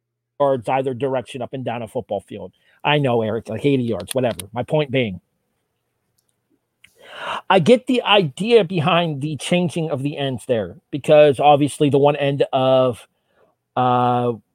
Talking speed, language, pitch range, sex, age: 155 wpm, English, 120-165 Hz, male, 40-59